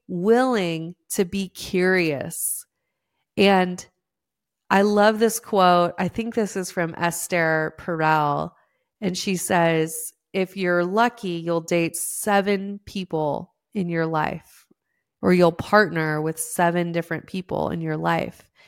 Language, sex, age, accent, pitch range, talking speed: English, female, 30-49, American, 170-205 Hz, 125 wpm